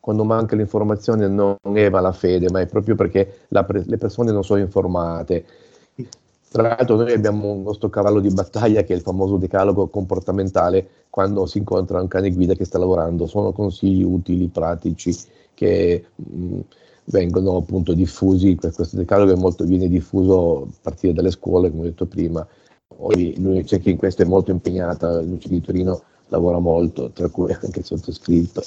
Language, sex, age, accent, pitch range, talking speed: Italian, male, 40-59, native, 90-100 Hz, 170 wpm